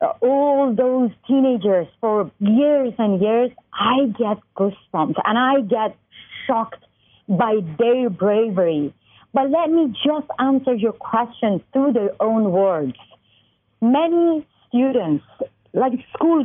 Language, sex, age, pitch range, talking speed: English, female, 40-59, 205-275 Hz, 120 wpm